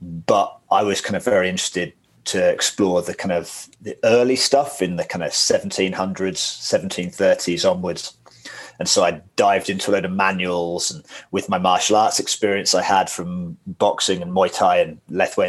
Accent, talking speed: British, 180 wpm